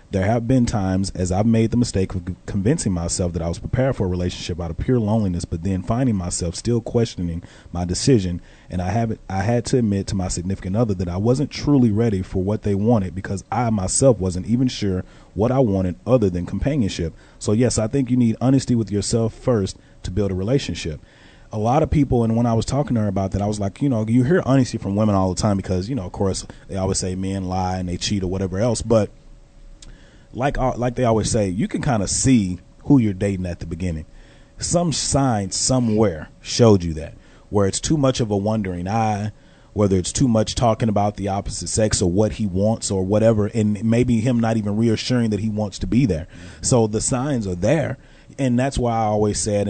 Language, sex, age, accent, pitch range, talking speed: English, male, 30-49, American, 95-120 Hz, 225 wpm